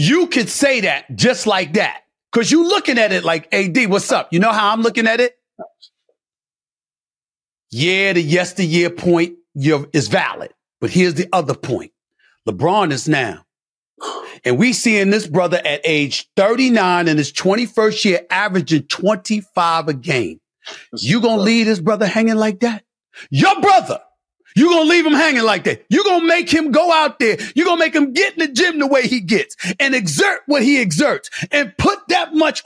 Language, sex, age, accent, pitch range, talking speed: English, male, 40-59, American, 180-280 Hz, 180 wpm